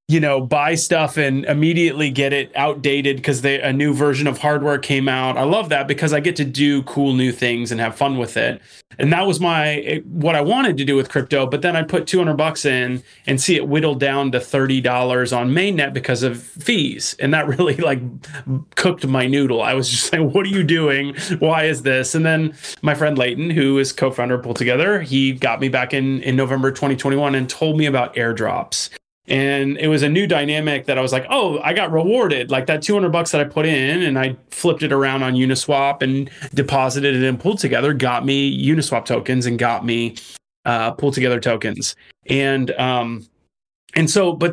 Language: English